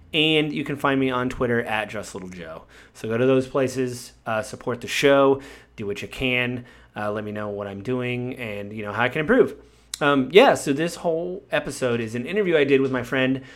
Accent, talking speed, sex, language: American, 230 wpm, male, English